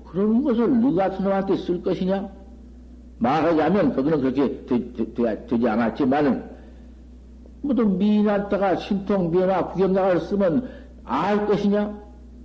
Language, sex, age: Korean, male, 60-79